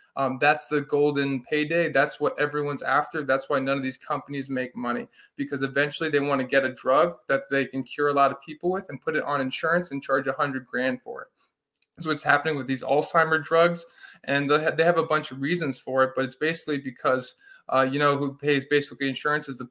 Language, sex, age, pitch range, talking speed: English, male, 20-39, 135-155 Hz, 230 wpm